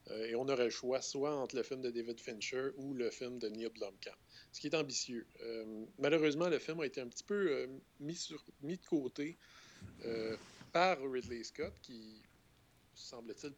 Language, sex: English, male